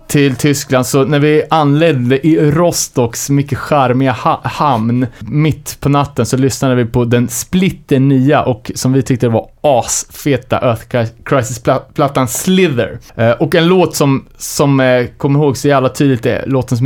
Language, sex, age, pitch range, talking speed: Swedish, male, 30-49, 120-150 Hz, 165 wpm